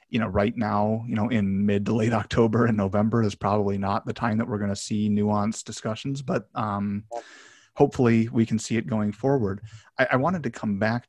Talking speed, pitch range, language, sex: 215 wpm, 100-115 Hz, English, male